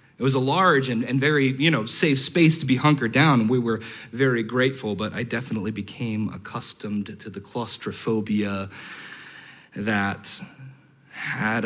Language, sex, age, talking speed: English, male, 30-49, 150 wpm